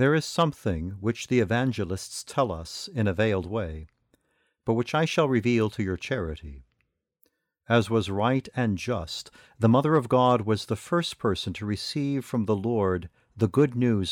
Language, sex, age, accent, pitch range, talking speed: English, male, 50-69, American, 105-130 Hz, 175 wpm